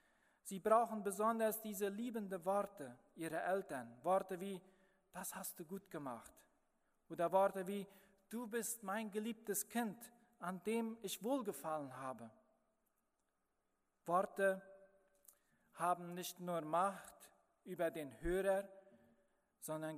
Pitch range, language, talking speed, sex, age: 170-225 Hz, German, 110 wpm, male, 40-59